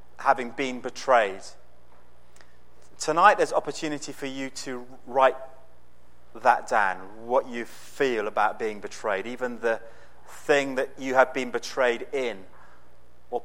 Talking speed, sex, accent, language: 130 wpm, male, British, English